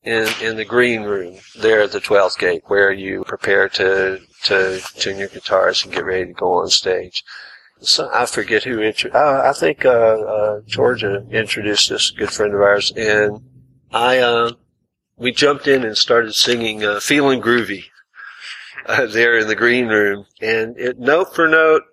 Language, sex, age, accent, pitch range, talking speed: English, male, 50-69, American, 105-120 Hz, 180 wpm